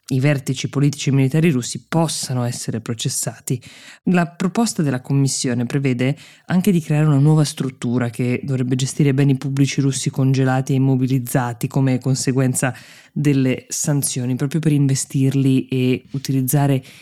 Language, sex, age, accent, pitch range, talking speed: Italian, female, 20-39, native, 130-150 Hz, 135 wpm